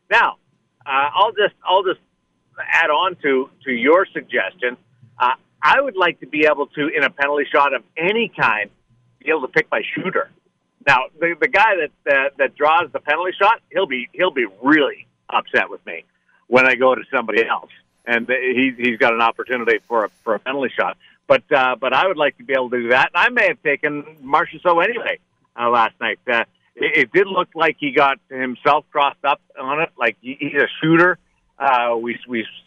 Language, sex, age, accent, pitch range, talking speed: English, male, 50-69, American, 120-160 Hz, 205 wpm